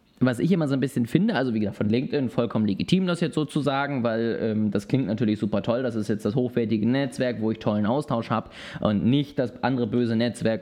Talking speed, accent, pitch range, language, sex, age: 230 wpm, German, 125-175 Hz, German, male, 20-39